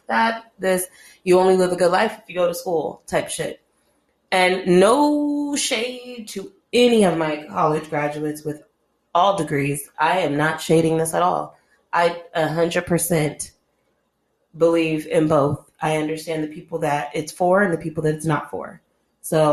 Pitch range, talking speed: 155-185 Hz, 165 wpm